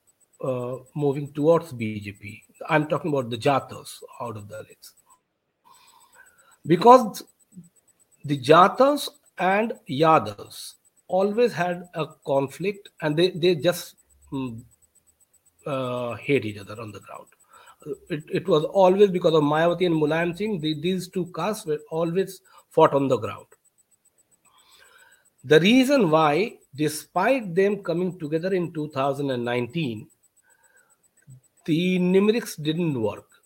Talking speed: 120 wpm